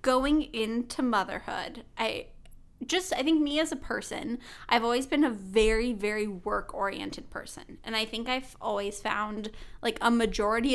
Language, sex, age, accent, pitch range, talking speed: English, female, 10-29, American, 210-275 Hz, 160 wpm